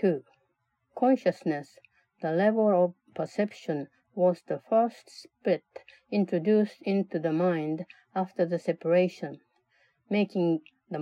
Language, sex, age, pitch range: Japanese, female, 60-79, 165-210 Hz